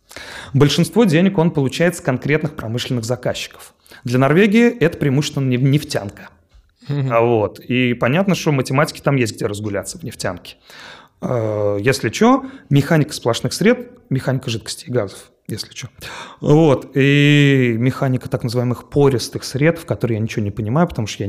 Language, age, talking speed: Russian, 30-49, 145 wpm